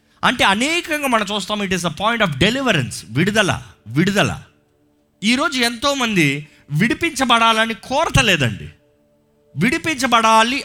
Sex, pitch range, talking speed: male, 130-210 Hz, 100 wpm